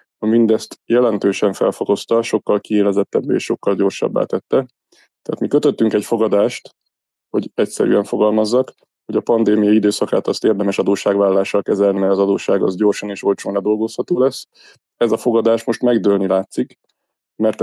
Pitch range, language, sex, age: 100-115 Hz, Hungarian, male, 20-39